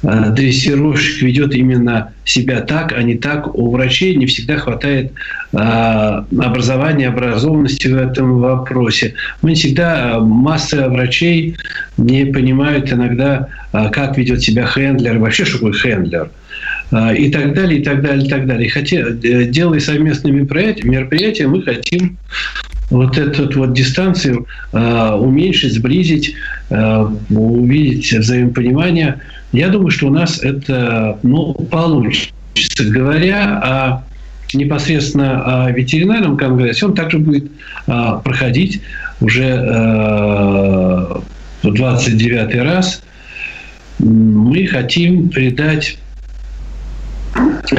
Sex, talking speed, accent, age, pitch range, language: male, 110 wpm, native, 50-69, 120-150 Hz, Russian